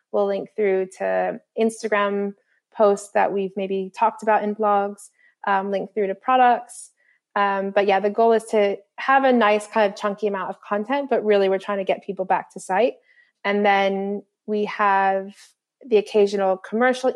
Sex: female